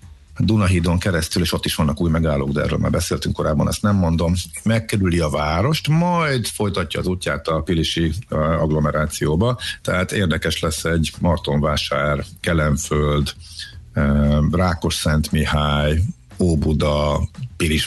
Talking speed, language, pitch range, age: 125 wpm, Hungarian, 80-100 Hz, 60-79